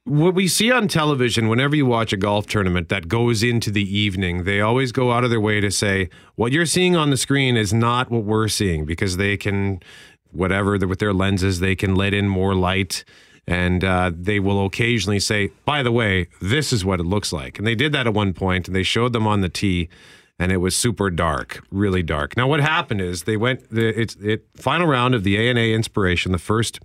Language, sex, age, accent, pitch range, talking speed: English, male, 40-59, American, 95-120 Hz, 230 wpm